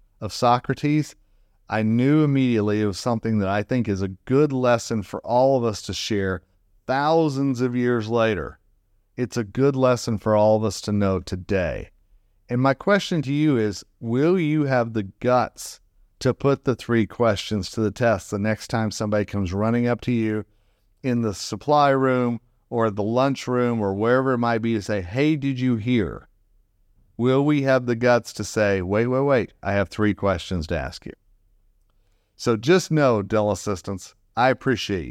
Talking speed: 180 wpm